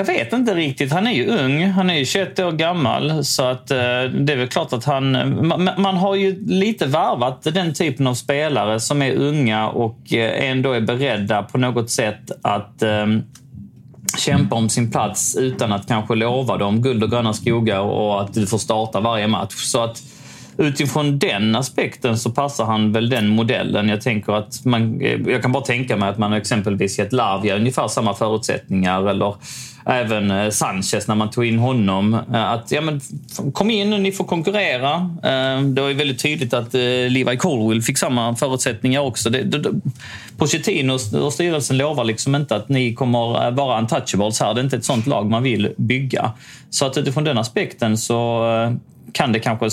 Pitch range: 110-140 Hz